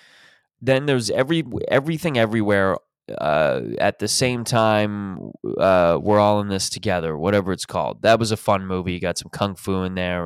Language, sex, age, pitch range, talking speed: English, male, 20-39, 95-130 Hz, 180 wpm